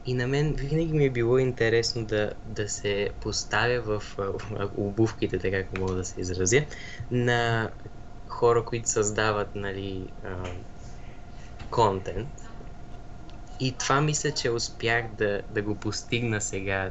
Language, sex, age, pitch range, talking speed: Bulgarian, male, 20-39, 100-115 Hz, 140 wpm